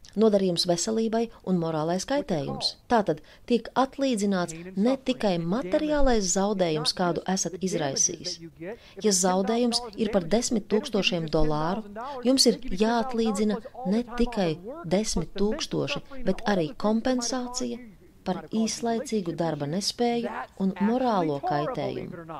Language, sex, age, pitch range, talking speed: Russian, female, 30-49, 170-235 Hz, 105 wpm